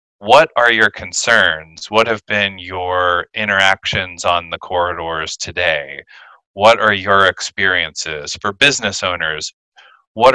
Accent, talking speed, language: American, 120 wpm, English